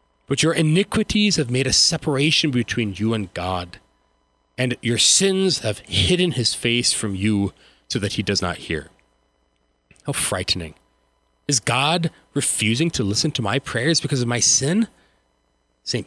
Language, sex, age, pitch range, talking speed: English, male, 30-49, 105-165 Hz, 155 wpm